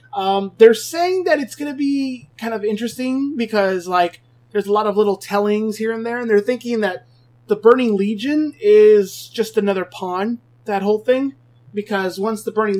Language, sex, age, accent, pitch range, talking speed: English, male, 30-49, American, 160-205 Hz, 190 wpm